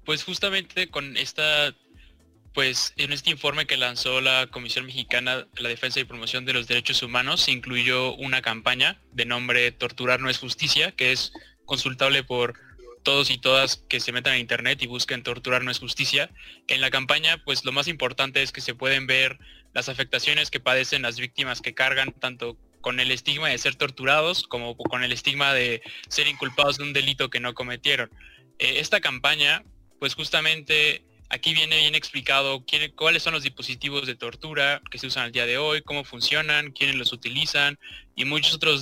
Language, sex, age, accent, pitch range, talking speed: English, male, 20-39, Mexican, 125-145 Hz, 185 wpm